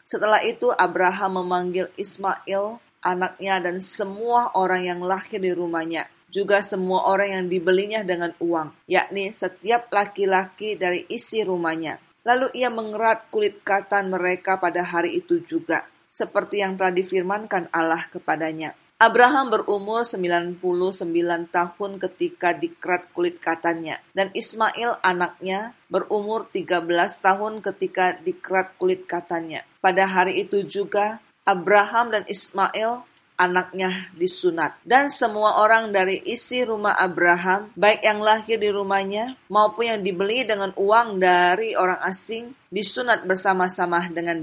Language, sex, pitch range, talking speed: Indonesian, female, 185-220 Hz, 125 wpm